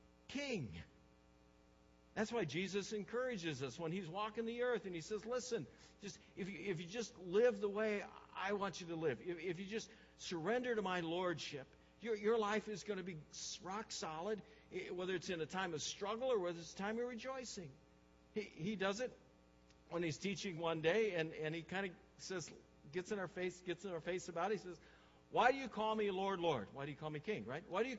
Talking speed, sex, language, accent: 225 wpm, male, English, American